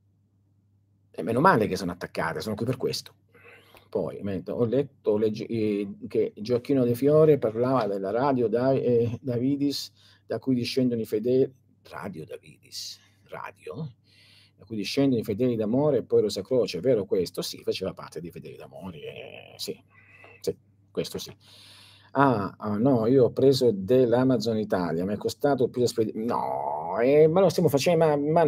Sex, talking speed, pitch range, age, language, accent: male, 155 wpm, 100-130 Hz, 50-69, Italian, native